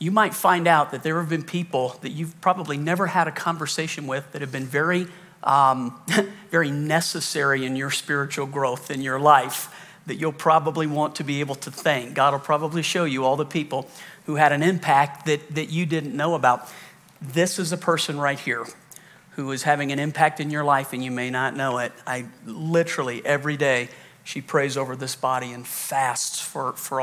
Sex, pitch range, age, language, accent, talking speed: male, 135-170 Hz, 50-69, English, American, 200 wpm